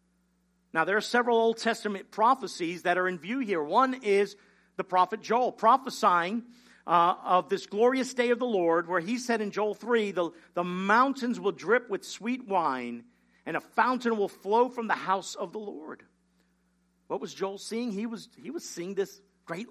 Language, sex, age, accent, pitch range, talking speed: English, male, 50-69, American, 185-240 Hz, 185 wpm